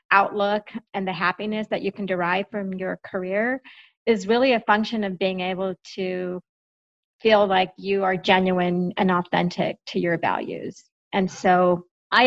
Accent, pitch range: American, 180-210 Hz